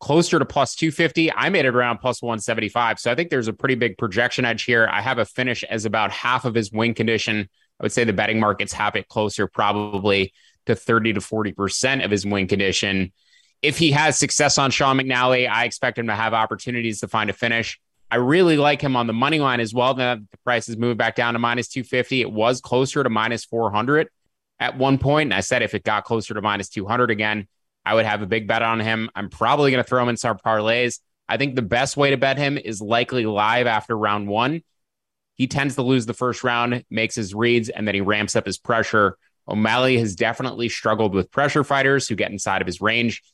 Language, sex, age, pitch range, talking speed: English, male, 20-39, 105-125 Hz, 230 wpm